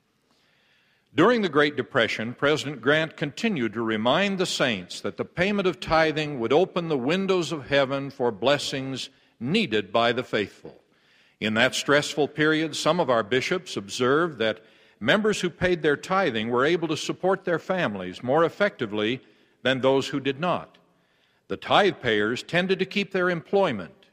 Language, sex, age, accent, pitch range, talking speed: English, male, 60-79, American, 115-165 Hz, 160 wpm